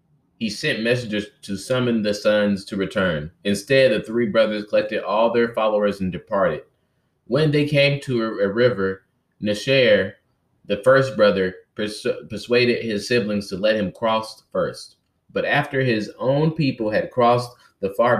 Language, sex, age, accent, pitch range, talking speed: English, male, 30-49, American, 100-125 Hz, 155 wpm